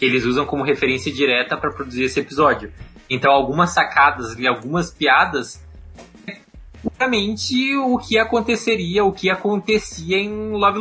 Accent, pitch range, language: Brazilian, 135-180 Hz, Portuguese